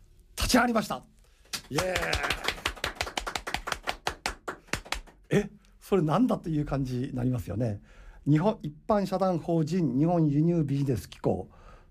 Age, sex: 60-79, male